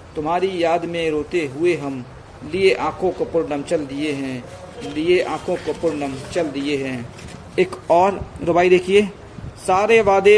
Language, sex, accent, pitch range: Hindi, male, native, 130-175 Hz